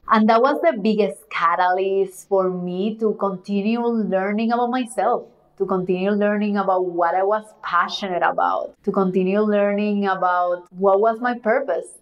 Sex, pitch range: female, 185-220 Hz